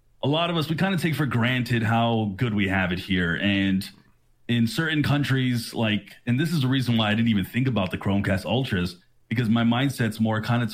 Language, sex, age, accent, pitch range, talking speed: English, male, 30-49, American, 100-125 Hz, 230 wpm